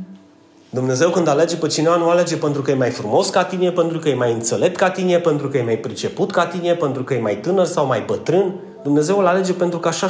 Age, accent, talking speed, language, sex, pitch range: 30-49, native, 250 wpm, Romanian, male, 130-185 Hz